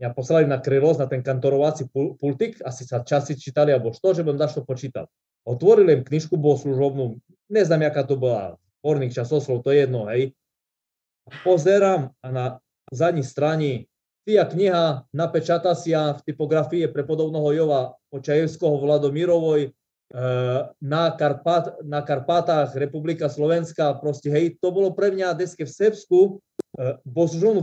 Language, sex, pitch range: Slovak, male, 130-165 Hz